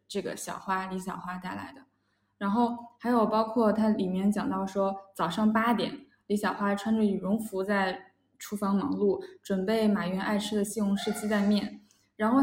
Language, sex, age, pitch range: Chinese, female, 10-29, 195-230 Hz